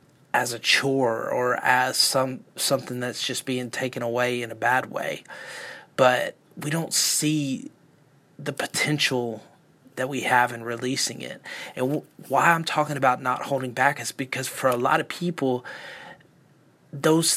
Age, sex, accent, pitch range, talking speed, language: 30-49, male, American, 130-155 Hz, 150 wpm, English